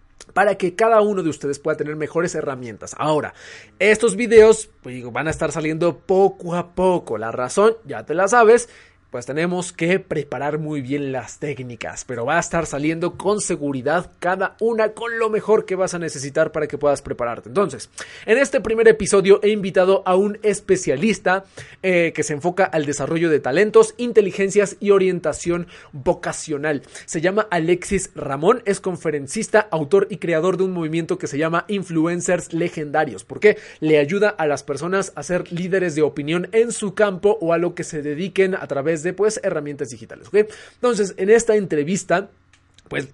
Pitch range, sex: 150-200 Hz, male